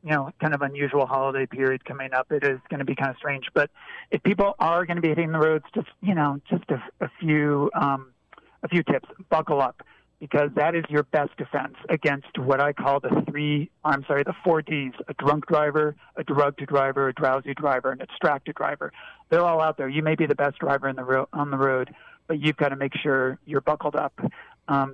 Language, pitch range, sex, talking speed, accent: English, 140-155 Hz, male, 220 wpm, American